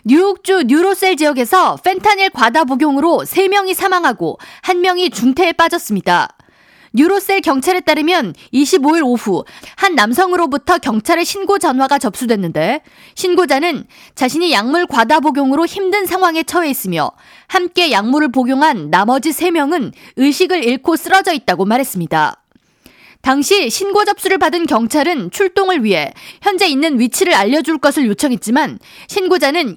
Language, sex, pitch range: Korean, female, 265-365 Hz